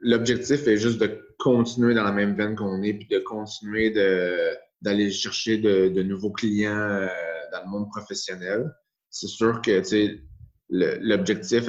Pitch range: 95-115 Hz